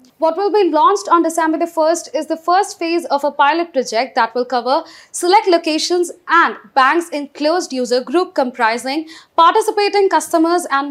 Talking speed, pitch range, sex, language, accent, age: 170 wpm, 260-345 Hz, female, English, Indian, 20-39